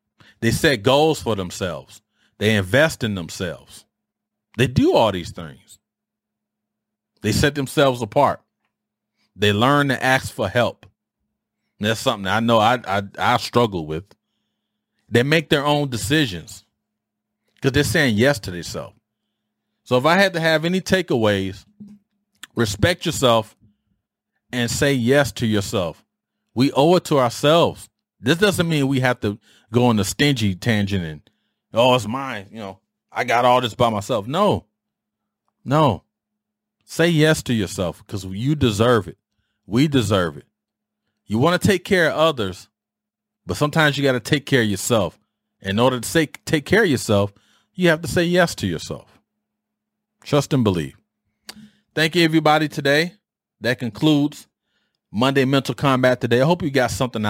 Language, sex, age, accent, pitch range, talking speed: English, male, 30-49, American, 105-155 Hz, 155 wpm